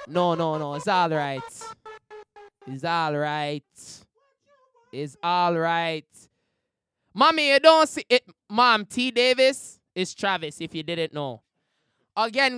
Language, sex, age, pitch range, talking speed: English, male, 20-39, 160-260 Hz, 130 wpm